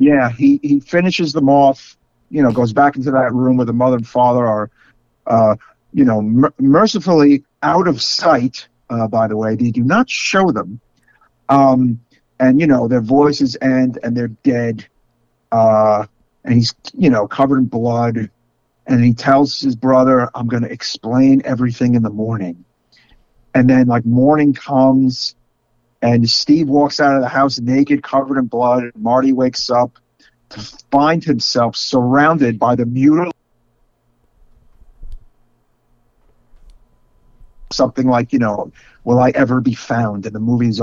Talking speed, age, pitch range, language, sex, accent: 155 wpm, 50-69, 120-145 Hz, English, male, American